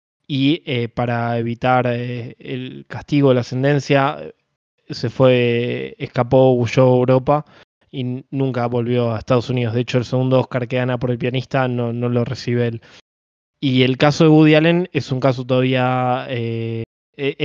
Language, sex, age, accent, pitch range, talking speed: Spanish, male, 20-39, Argentinian, 120-140 Hz, 165 wpm